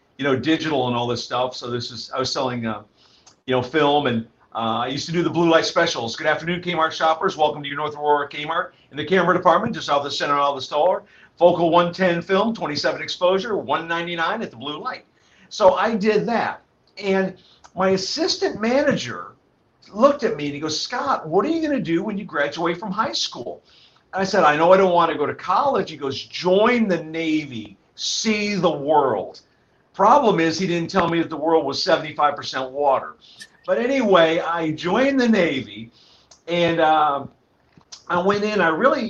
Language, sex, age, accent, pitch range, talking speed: English, male, 50-69, American, 145-190 Hz, 200 wpm